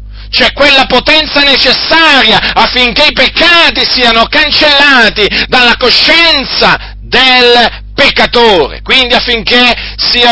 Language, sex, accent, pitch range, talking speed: Italian, male, native, 220-270 Hz, 95 wpm